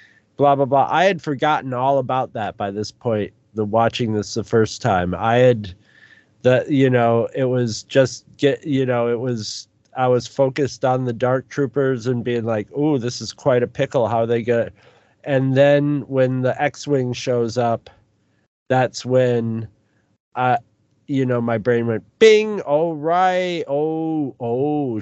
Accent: American